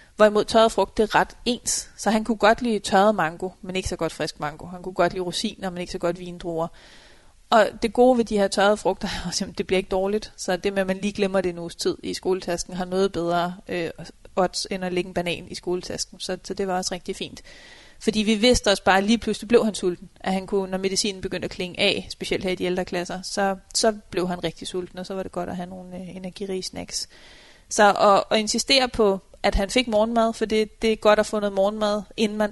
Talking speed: 240 wpm